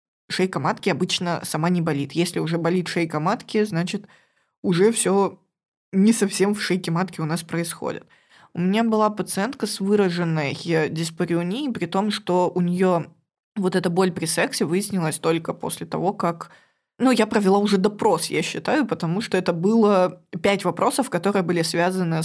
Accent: native